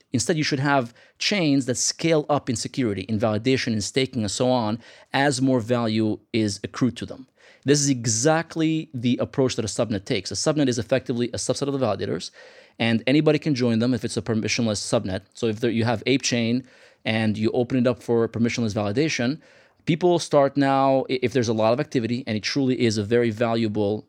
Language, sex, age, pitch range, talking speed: English, male, 30-49, 110-130 Hz, 205 wpm